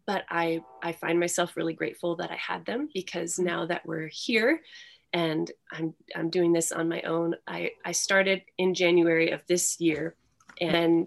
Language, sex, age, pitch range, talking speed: English, female, 20-39, 170-195 Hz, 180 wpm